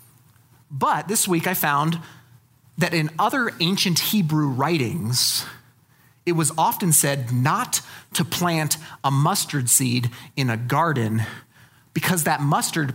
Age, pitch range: 30-49, 130-200 Hz